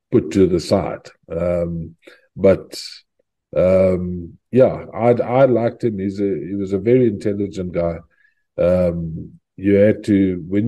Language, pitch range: English, 90-105 Hz